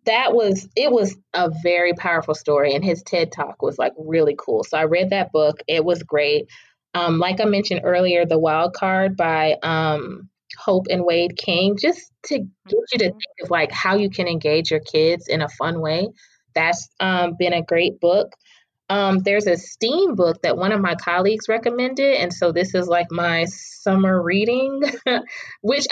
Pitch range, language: 170-205 Hz, English